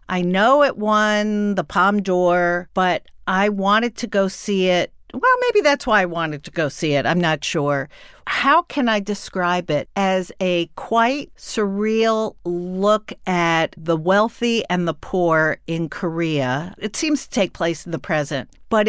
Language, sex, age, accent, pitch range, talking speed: English, female, 50-69, American, 160-210 Hz, 170 wpm